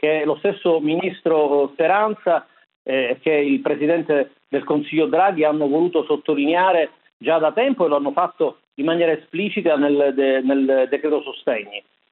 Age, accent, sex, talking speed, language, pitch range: 50-69, native, male, 165 wpm, Italian, 155-205 Hz